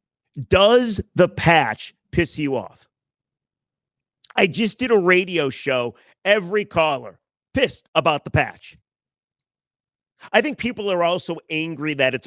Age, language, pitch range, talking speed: 40-59, English, 135-180 Hz, 125 wpm